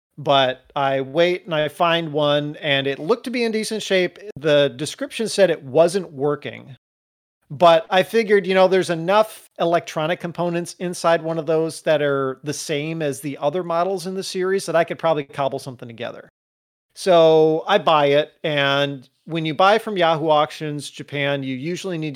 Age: 40-59